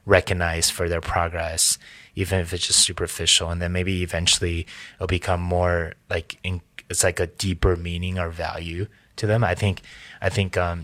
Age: 20-39